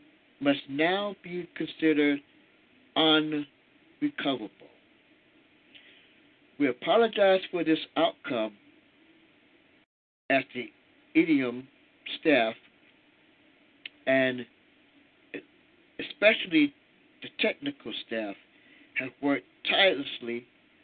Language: English